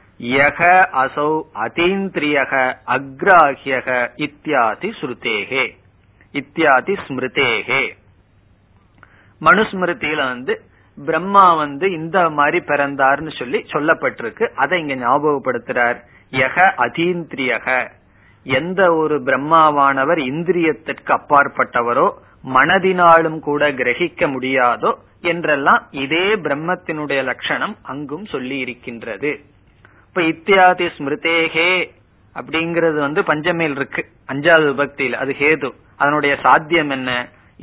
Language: Tamil